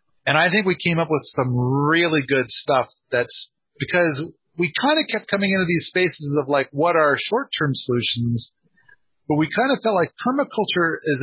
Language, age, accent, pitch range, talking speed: English, 40-59, American, 120-170 Hz, 190 wpm